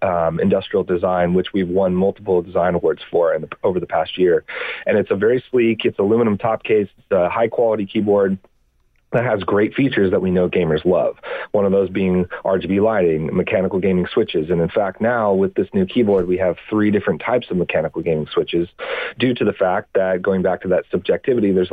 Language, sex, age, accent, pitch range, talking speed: English, male, 40-59, American, 90-105 Hz, 210 wpm